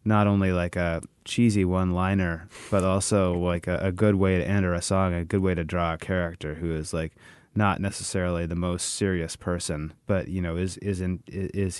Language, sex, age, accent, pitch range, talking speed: English, male, 30-49, American, 85-100 Hz, 210 wpm